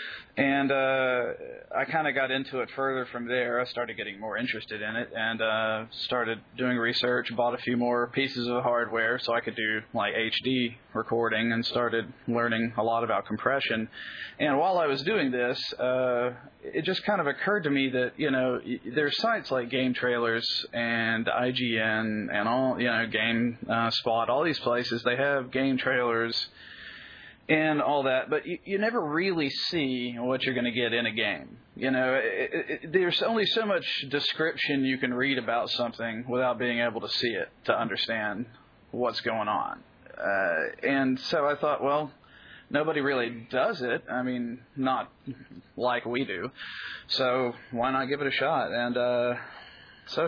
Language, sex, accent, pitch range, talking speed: English, male, American, 120-140 Hz, 180 wpm